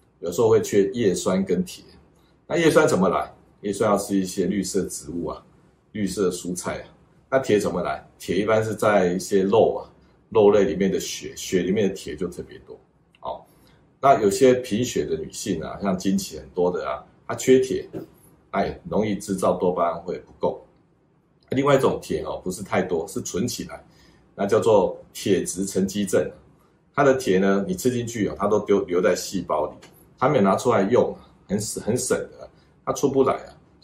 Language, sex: Chinese, male